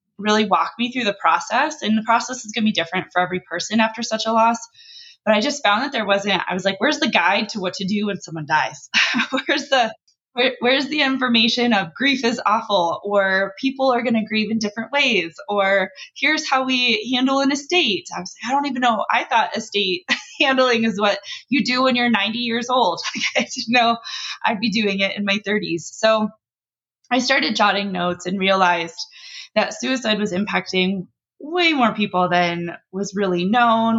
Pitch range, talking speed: 185-240 Hz, 200 wpm